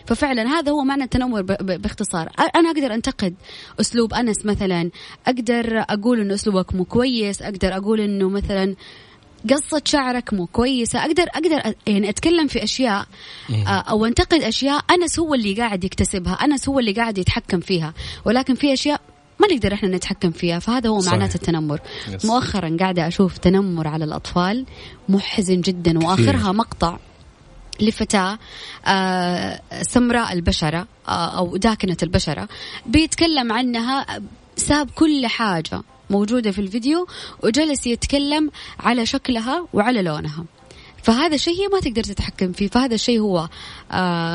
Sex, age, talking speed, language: female, 20-39, 140 wpm, Arabic